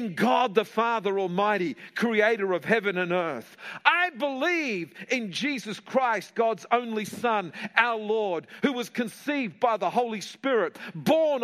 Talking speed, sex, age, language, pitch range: 140 wpm, male, 50-69, English, 190-270 Hz